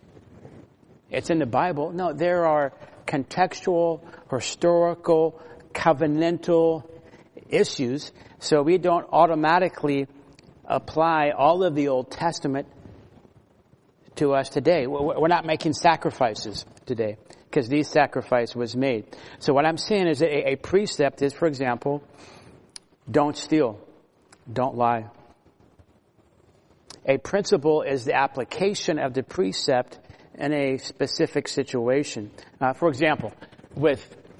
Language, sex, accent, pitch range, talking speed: English, male, American, 130-160 Hz, 110 wpm